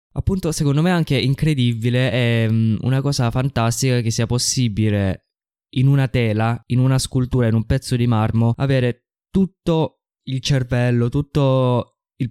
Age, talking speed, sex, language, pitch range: 20-39, 145 wpm, male, Italian, 105-125 Hz